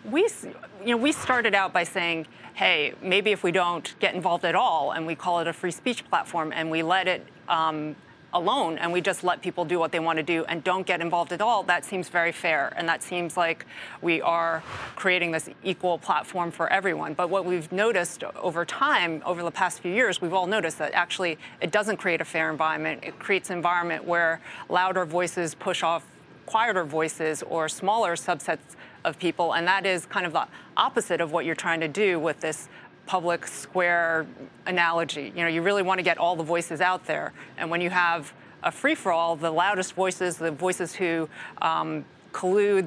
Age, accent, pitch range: 30-49, American, 165-185 Hz